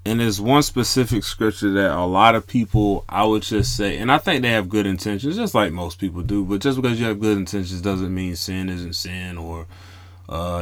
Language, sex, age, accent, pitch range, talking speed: English, male, 30-49, American, 90-115 Hz, 225 wpm